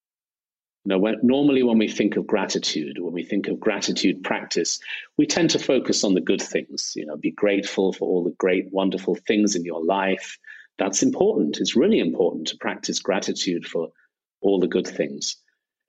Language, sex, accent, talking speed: English, male, British, 180 wpm